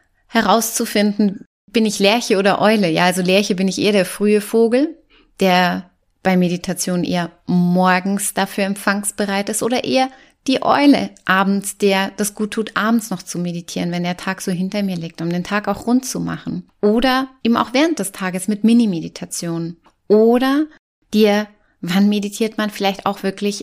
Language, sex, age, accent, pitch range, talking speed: German, female, 30-49, German, 185-225 Hz, 170 wpm